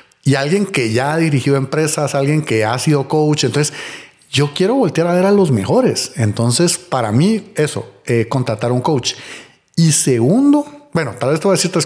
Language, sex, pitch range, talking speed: Spanish, male, 125-180 Hz, 190 wpm